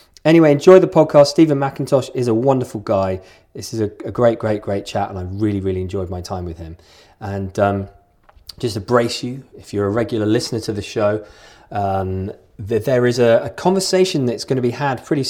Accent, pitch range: British, 115-155 Hz